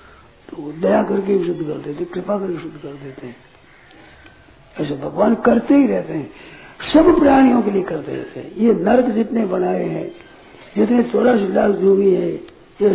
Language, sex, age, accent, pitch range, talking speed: Hindi, male, 60-79, native, 185-230 Hz, 155 wpm